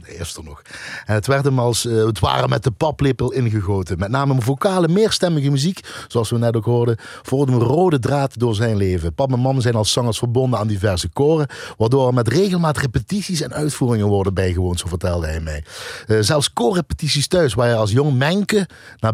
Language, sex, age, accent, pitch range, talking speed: Dutch, male, 50-69, Dutch, 105-140 Hz, 200 wpm